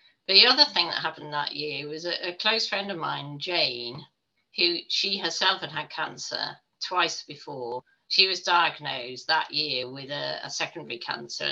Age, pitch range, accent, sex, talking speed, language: 50-69, 150-195 Hz, British, female, 170 wpm, English